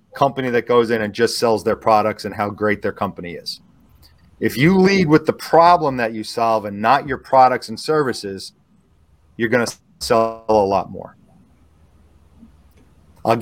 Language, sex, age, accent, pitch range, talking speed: English, male, 40-59, American, 110-135 Hz, 170 wpm